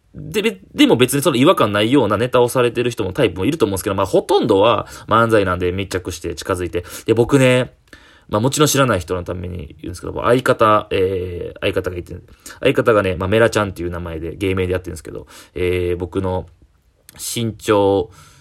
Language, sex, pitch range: Japanese, male, 90-115 Hz